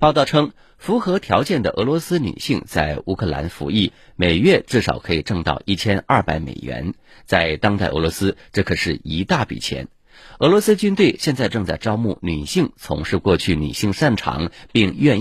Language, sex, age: Chinese, male, 50-69